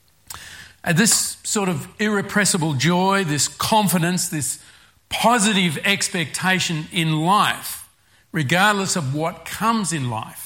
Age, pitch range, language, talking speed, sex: 50-69, 145-180 Hz, English, 110 wpm, male